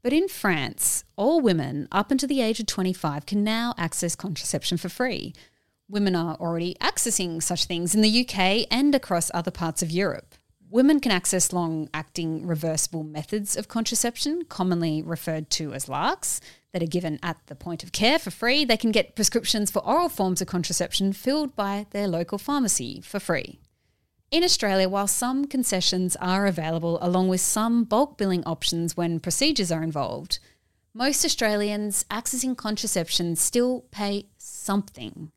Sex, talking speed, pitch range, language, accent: female, 160 wpm, 170-225 Hz, English, Australian